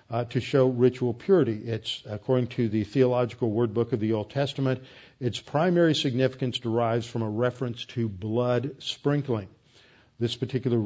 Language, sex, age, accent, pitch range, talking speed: English, male, 50-69, American, 120-145 Hz, 155 wpm